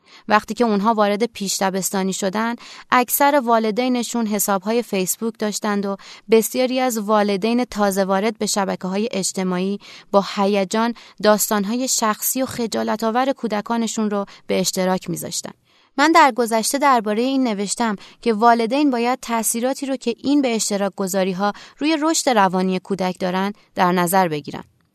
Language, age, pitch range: Persian, 30-49, 195-245 Hz